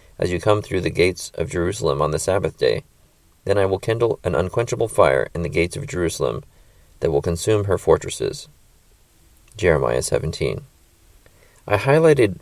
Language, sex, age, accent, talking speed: English, male, 30-49, American, 160 wpm